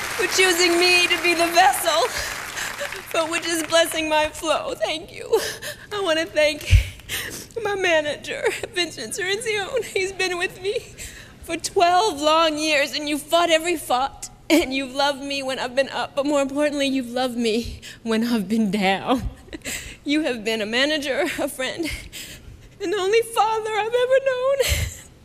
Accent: American